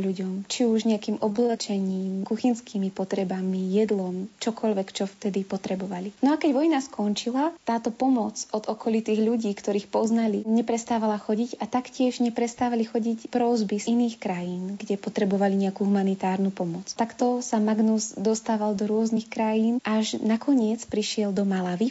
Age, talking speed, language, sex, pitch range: 20-39, 140 wpm, Slovak, female, 200-235 Hz